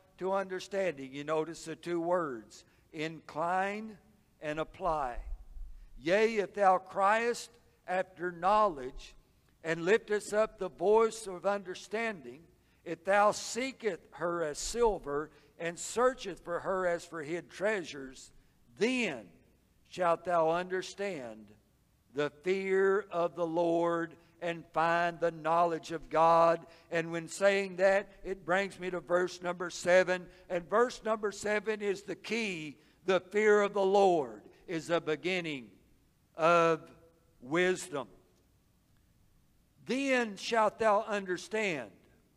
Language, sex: English, male